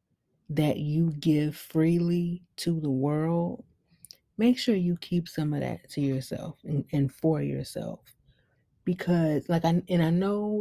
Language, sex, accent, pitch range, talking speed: English, female, American, 140-165 Hz, 145 wpm